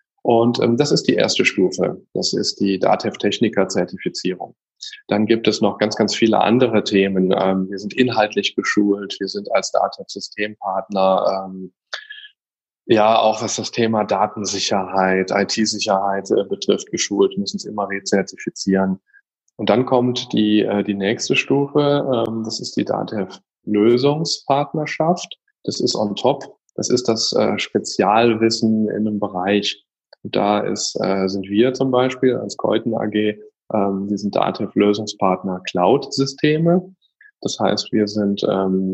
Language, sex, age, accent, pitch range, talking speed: German, male, 10-29, German, 95-115 Hz, 135 wpm